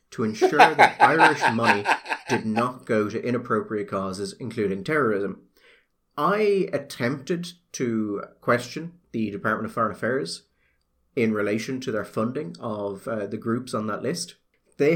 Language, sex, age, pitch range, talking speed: English, male, 30-49, 105-160 Hz, 140 wpm